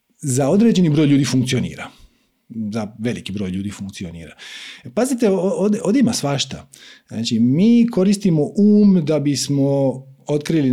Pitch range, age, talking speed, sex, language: 120-175 Hz, 40-59, 110 wpm, male, Croatian